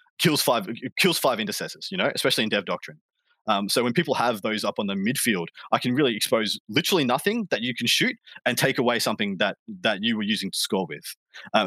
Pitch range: 105-135 Hz